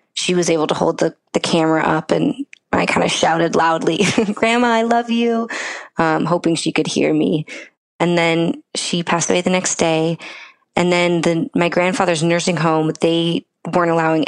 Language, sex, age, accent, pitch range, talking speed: English, female, 20-39, American, 155-180 Hz, 180 wpm